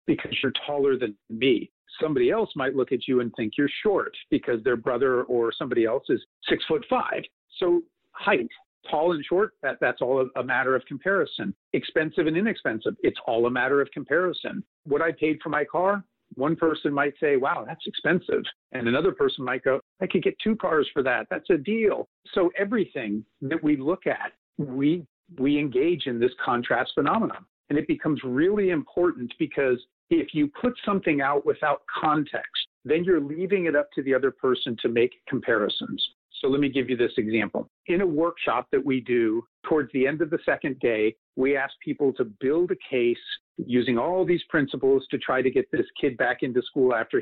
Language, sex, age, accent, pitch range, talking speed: English, male, 50-69, American, 130-200 Hz, 195 wpm